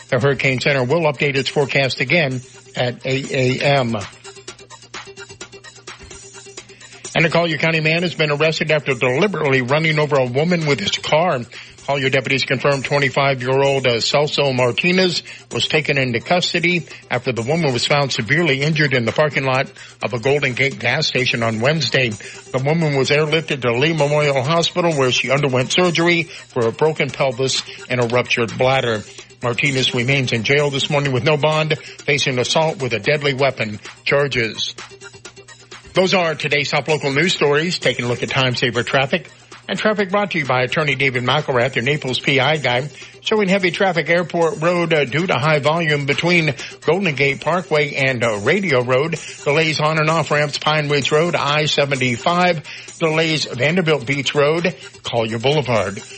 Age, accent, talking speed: 50-69, American, 160 wpm